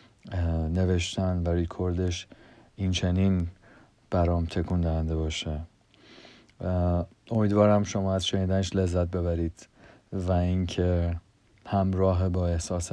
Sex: male